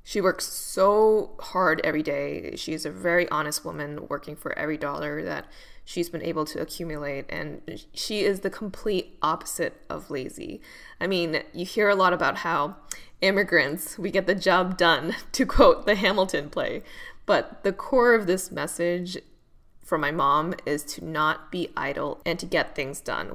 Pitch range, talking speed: 150-185 Hz, 170 wpm